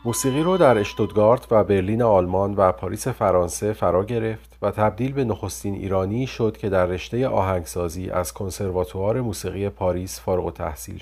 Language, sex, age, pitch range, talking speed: Persian, male, 40-59, 95-115 Hz, 150 wpm